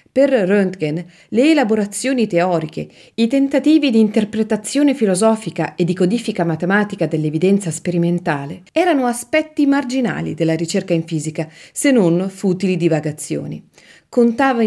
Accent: native